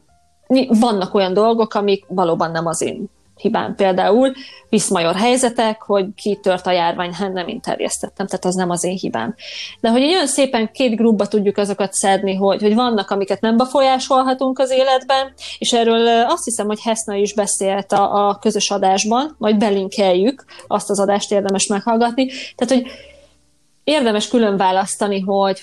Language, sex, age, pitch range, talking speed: Hungarian, female, 20-39, 195-230 Hz, 160 wpm